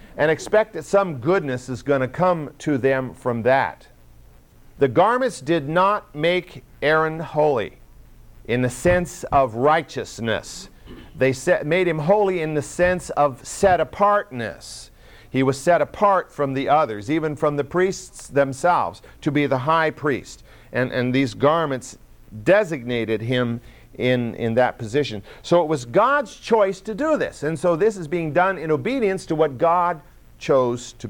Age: 50-69